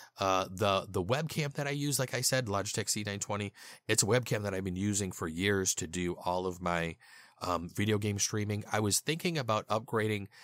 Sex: male